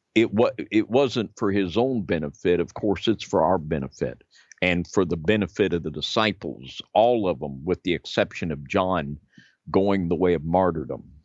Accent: American